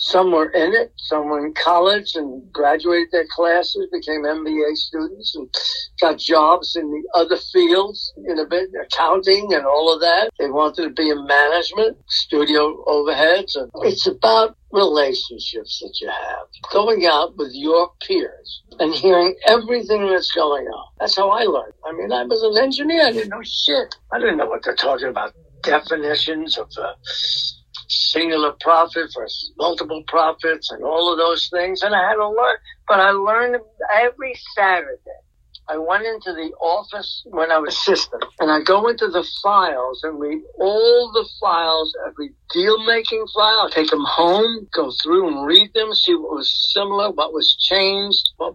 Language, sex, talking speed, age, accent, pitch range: English, male, 175 wpm, 60-79, American, 160-225 Hz